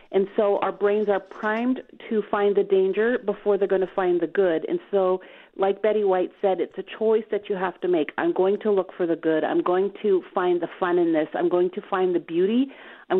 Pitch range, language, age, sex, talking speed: 185-215 Hz, English, 40-59, female, 240 wpm